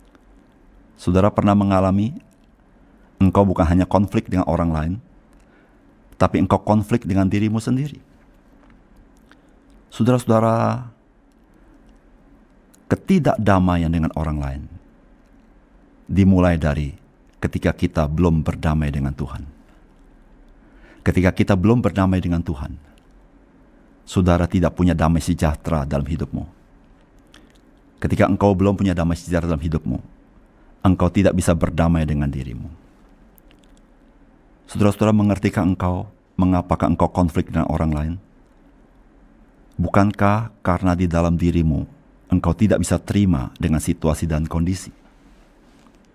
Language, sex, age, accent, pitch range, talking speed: Indonesian, male, 50-69, native, 80-100 Hz, 105 wpm